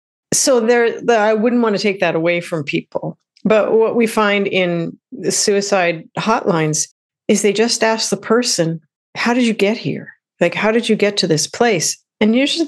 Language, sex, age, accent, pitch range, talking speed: English, female, 50-69, American, 170-215 Hz, 190 wpm